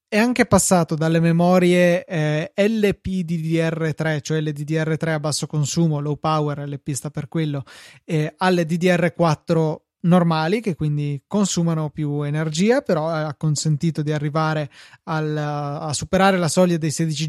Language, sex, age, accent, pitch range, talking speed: Italian, male, 20-39, native, 150-180 Hz, 140 wpm